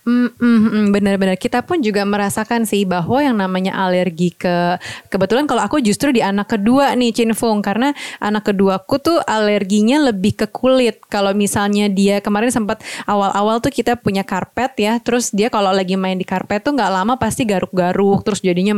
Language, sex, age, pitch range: Indonesian, female, 20-39, 195-235 Hz